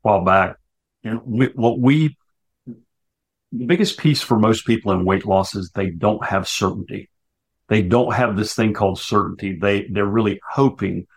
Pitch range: 100-120 Hz